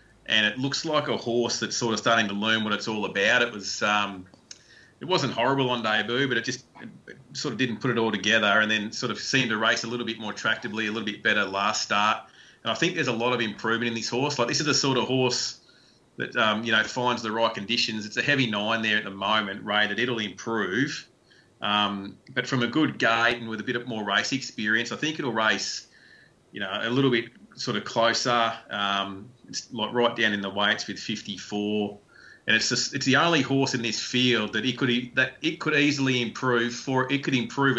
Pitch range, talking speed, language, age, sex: 105-125 Hz, 240 wpm, English, 30-49, male